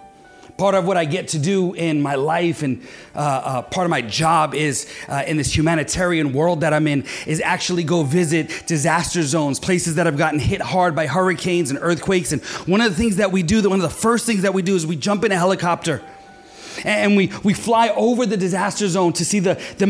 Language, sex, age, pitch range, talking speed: English, male, 30-49, 180-230 Hz, 230 wpm